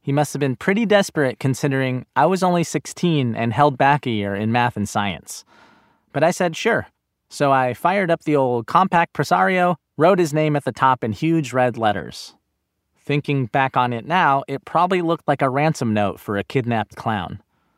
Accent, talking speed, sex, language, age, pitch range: American, 195 wpm, male, English, 20-39, 105-155 Hz